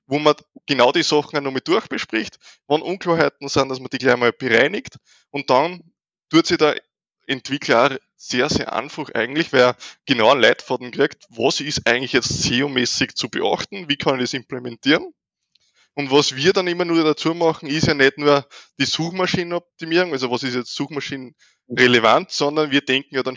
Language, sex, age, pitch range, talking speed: German, male, 20-39, 125-155 Hz, 185 wpm